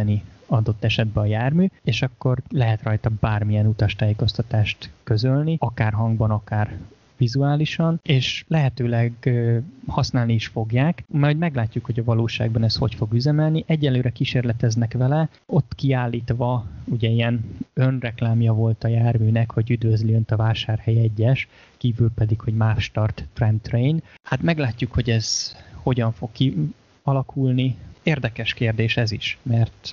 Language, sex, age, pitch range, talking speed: Hungarian, male, 20-39, 110-125 Hz, 130 wpm